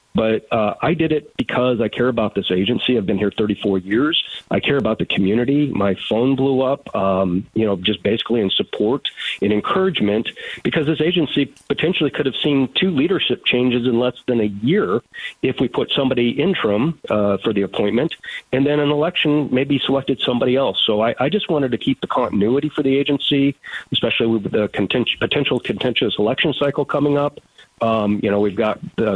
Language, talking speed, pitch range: English, 190 wpm, 105-140 Hz